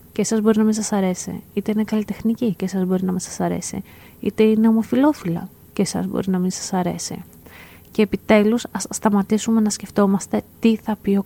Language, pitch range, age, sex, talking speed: Greek, 185-215 Hz, 30-49, female, 195 wpm